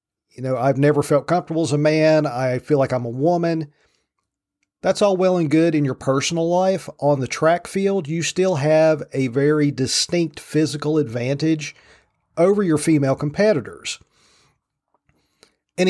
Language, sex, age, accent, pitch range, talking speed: English, male, 40-59, American, 135-160 Hz, 155 wpm